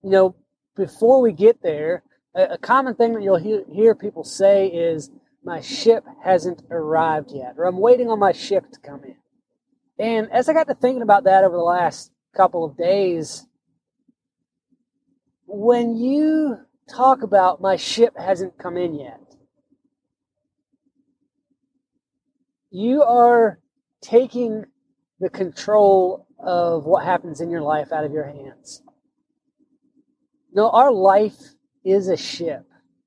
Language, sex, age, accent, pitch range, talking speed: English, male, 20-39, American, 195-270 Hz, 135 wpm